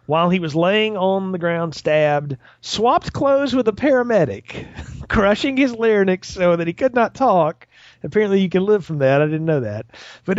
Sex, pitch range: male, 145-210 Hz